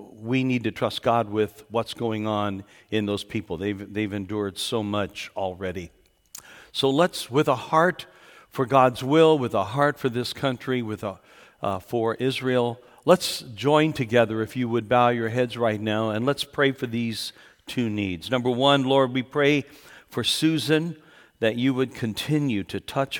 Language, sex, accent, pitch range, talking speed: English, male, American, 105-135 Hz, 175 wpm